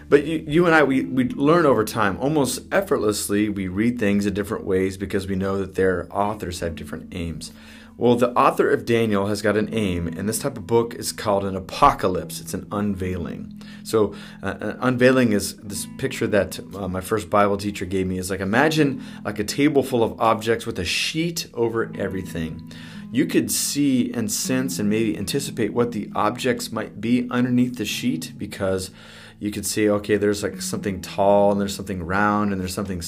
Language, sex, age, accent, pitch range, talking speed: English, male, 30-49, American, 95-120 Hz, 200 wpm